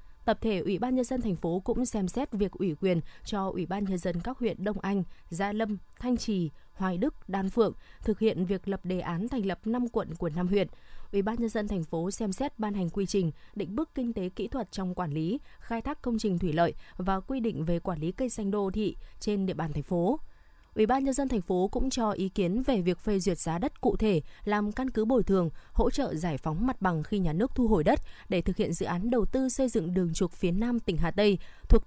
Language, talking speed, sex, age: Vietnamese, 260 wpm, female, 20-39